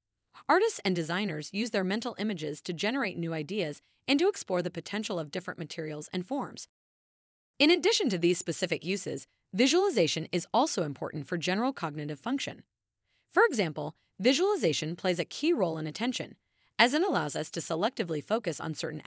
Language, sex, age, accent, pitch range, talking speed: English, female, 30-49, American, 160-225 Hz, 165 wpm